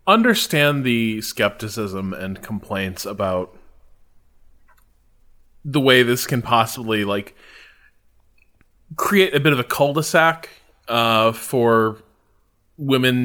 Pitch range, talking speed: 100-145 Hz, 90 wpm